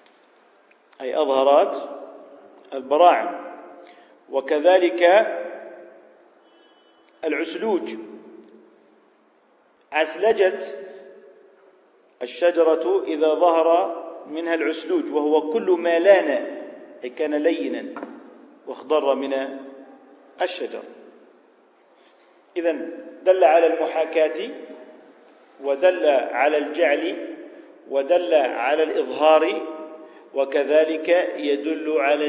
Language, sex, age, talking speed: Arabic, male, 50-69, 65 wpm